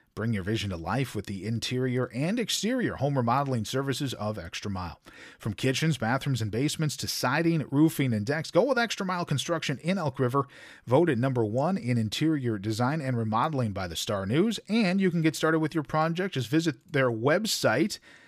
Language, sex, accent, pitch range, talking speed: English, male, American, 115-160 Hz, 190 wpm